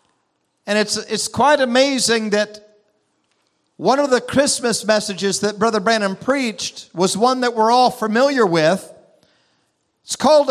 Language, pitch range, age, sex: English, 220-270 Hz, 50-69, male